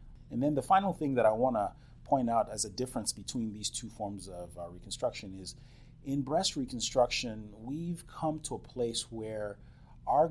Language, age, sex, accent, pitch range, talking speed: English, 30-49, male, American, 100-130 Hz, 185 wpm